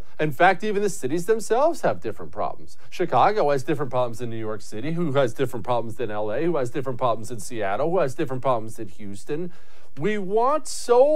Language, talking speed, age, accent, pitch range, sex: English, 205 wpm, 40-59, American, 135-215 Hz, male